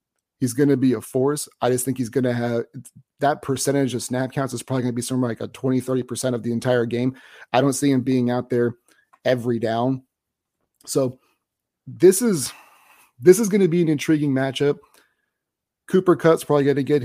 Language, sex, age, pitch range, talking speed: English, male, 30-49, 125-145 Hz, 205 wpm